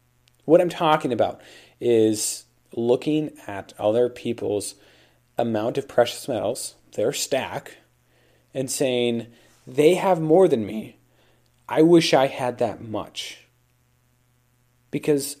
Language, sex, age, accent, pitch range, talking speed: English, male, 40-59, American, 115-145 Hz, 115 wpm